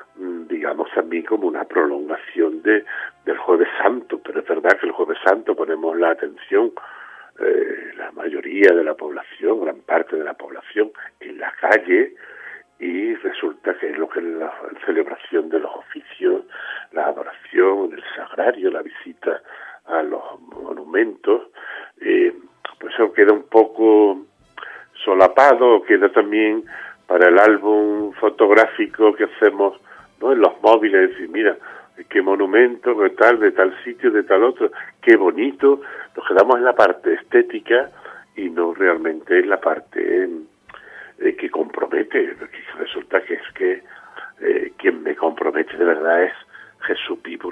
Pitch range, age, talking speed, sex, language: 360-410 Hz, 60-79, 150 wpm, male, Spanish